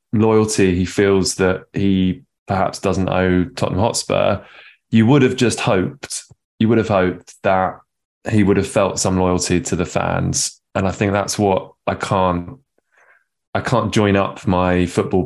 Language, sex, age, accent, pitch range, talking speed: English, male, 20-39, British, 90-105 Hz, 165 wpm